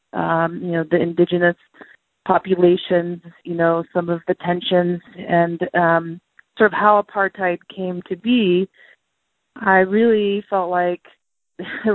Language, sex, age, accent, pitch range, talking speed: English, female, 30-49, American, 165-185 Hz, 130 wpm